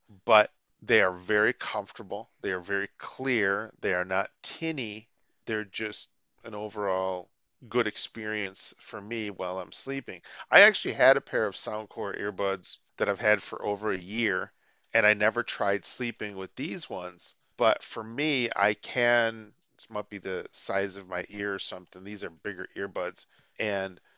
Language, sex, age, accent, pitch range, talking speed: English, male, 40-59, American, 95-115 Hz, 165 wpm